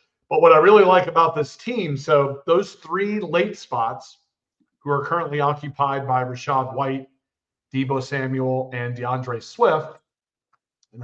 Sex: male